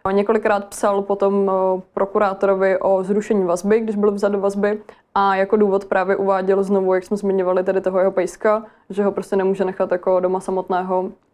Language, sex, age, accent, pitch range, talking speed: Czech, female, 20-39, native, 190-200 Hz, 175 wpm